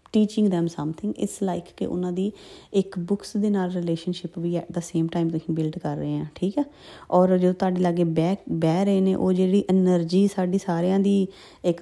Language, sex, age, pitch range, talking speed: Punjabi, female, 20-39, 175-220 Hz, 205 wpm